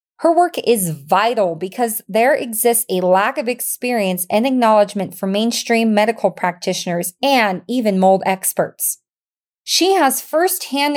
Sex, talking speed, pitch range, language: female, 130 wpm, 185-245 Hz, English